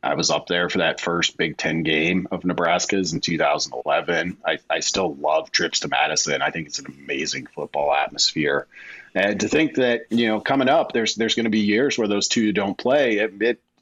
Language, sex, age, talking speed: English, male, 40-59, 215 wpm